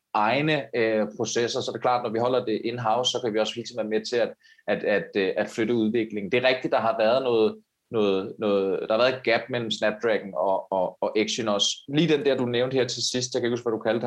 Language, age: Danish, 30-49